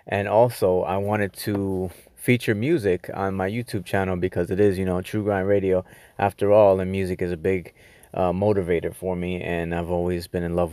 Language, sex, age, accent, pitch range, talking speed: English, male, 20-39, American, 90-100 Hz, 200 wpm